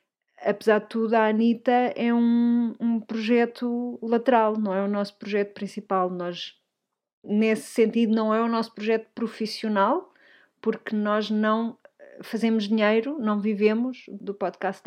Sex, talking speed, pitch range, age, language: female, 135 wpm, 200-240 Hz, 30-49, Portuguese